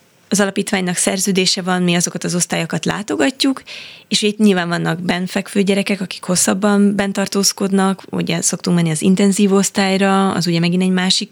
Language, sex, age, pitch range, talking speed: Hungarian, female, 20-39, 165-195 Hz, 155 wpm